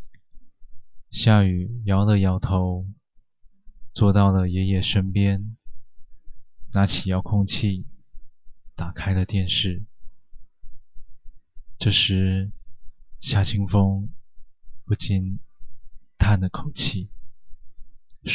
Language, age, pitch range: Chinese, 20-39, 95-115 Hz